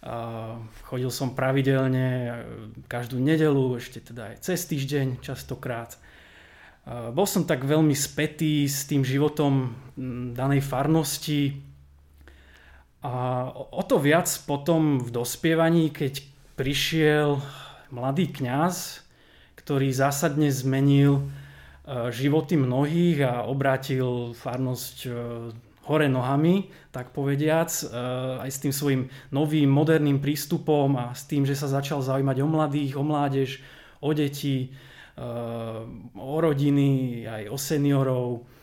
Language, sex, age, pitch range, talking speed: Slovak, male, 20-39, 125-150 Hz, 105 wpm